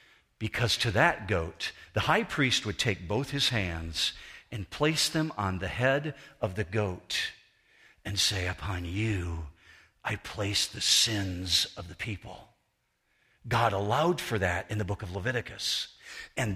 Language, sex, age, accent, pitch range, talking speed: English, male, 50-69, American, 110-170 Hz, 150 wpm